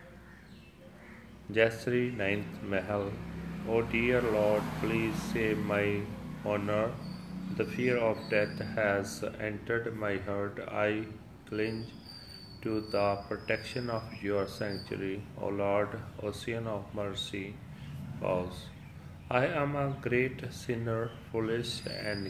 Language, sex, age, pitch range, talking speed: Punjabi, male, 40-59, 100-115 Hz, 105 wpm